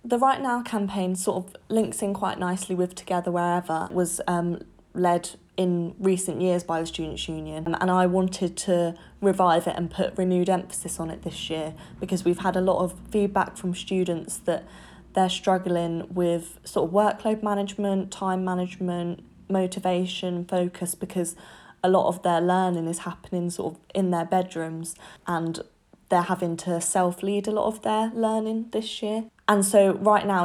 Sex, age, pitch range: female, 10-29, 175-190 Hz